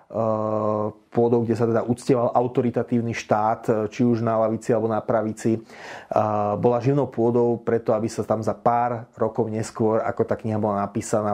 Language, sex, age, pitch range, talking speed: Slovak, male, 30-49, 110-125 Hz, 160 wpm